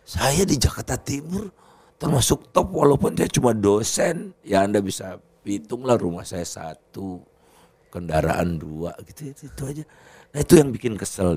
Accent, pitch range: native, 115-180 Hz